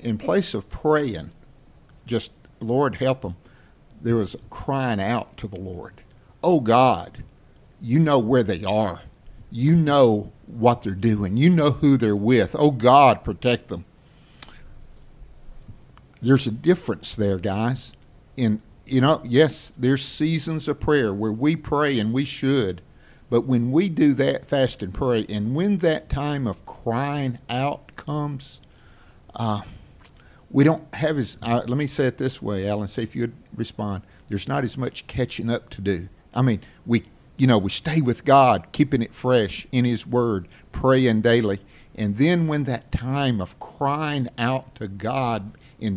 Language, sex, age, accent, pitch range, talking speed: English, male, 50-69, American, 105-135 Hz, 165 wpm